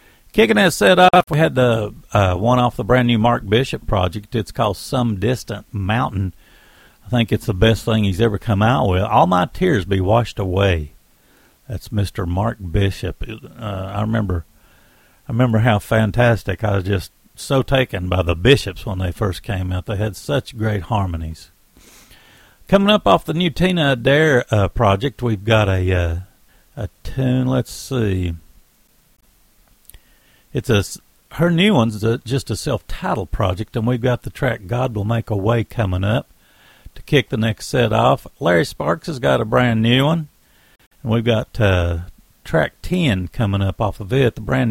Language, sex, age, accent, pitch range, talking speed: English, male, 60-79, American, 95-125 Hz, 180 wpm